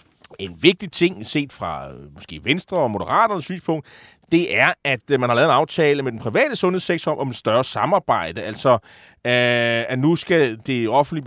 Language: Danish